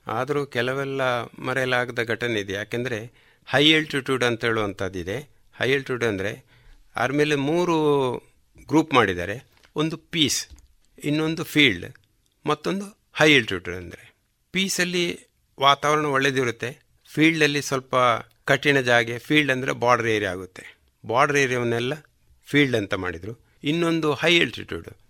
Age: 60-79